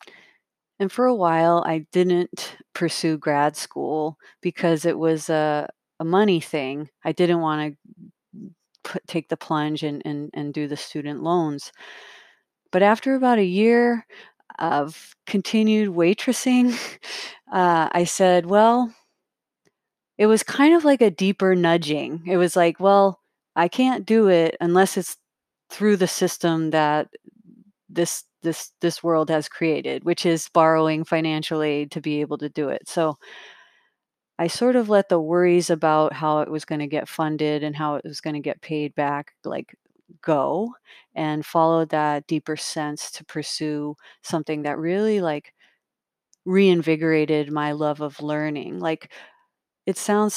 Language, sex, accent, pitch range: English, female, American, 155-195 Hz